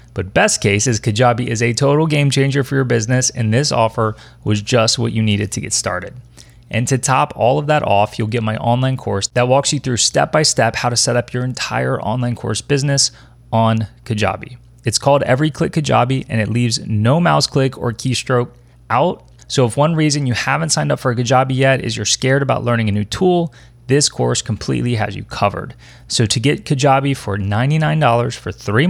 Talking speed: 210 wpm